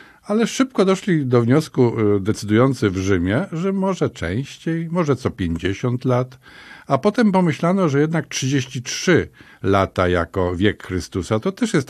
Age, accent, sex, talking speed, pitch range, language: 50-69, native, male, 140 wpm, 95-135 Hz, Polish